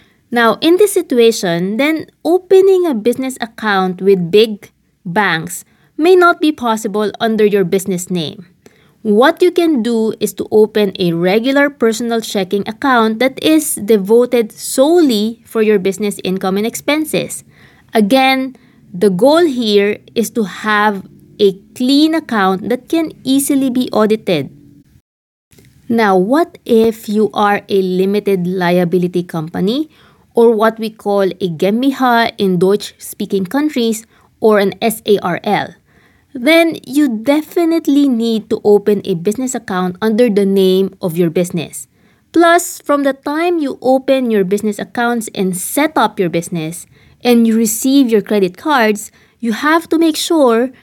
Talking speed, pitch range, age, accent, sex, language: 140 wpm, 195-265 Hz, 20-39, Filipino, female, English